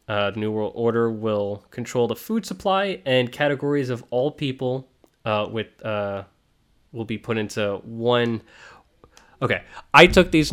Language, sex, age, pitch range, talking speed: English, male, 20-39, 100-120 Hz, 155 wpm